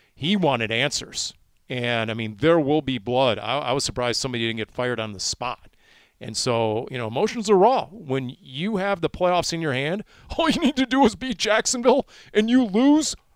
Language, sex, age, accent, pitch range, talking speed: English, male, 40-59, American, 115-160 Hz, 210 wpm